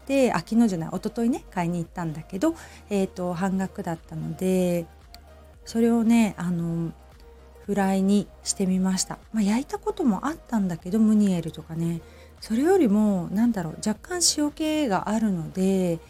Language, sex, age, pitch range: Japanese, female, 40-59, 170-230 Hz